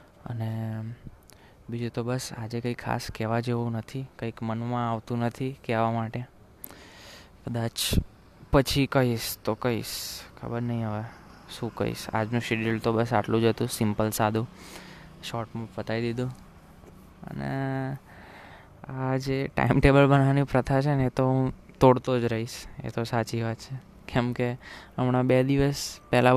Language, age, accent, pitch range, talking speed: Gujarati, 20-39, native, 115-135 Hz, 115 wpm